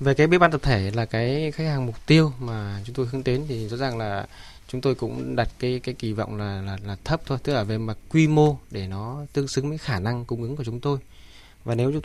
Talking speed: 275 wpm